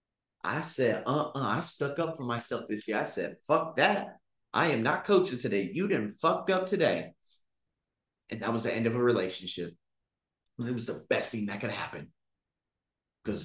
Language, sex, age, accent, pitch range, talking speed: English, male, 30-49, American, 120-150 Hz, 185 wpm